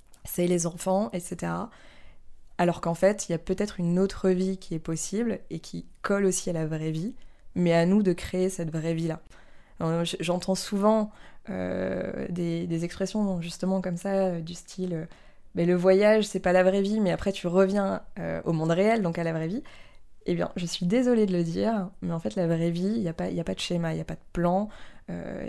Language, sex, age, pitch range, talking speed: French, female, 20-39, 170-200 Hz, 225 wpm